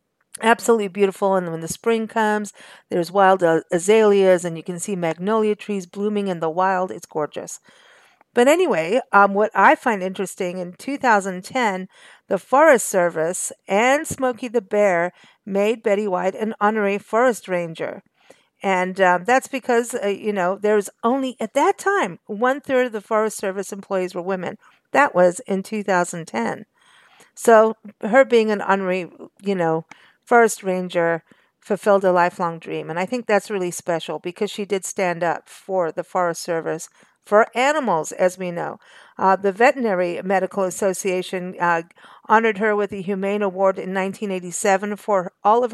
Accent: American